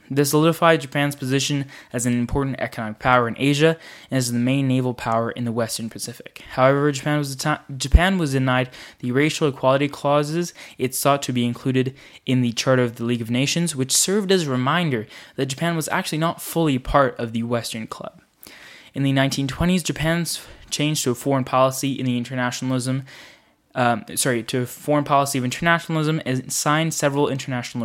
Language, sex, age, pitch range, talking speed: English, male, 10-29, 125-150 Hz, 180 wpm